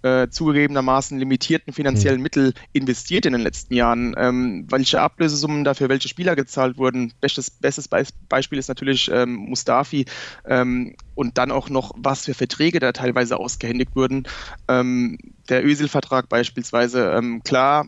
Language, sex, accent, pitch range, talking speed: German, male, German, 125-145 Hz, 150 wpm